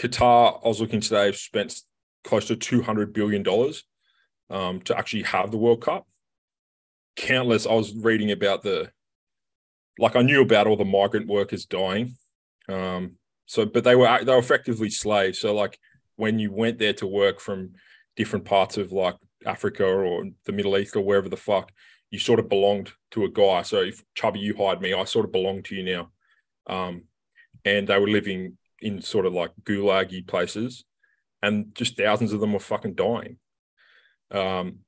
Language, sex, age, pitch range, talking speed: English, male, 20-39, 100-115 Hz, 180 wpm